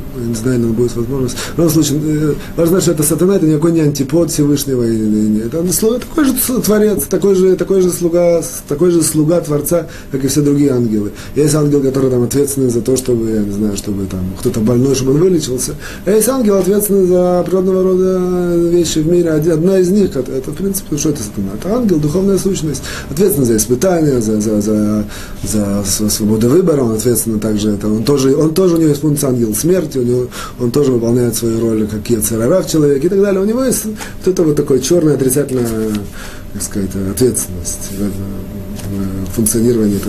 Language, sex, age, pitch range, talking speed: Russian, male, 30-49, 110-170 Hz, 185 wpm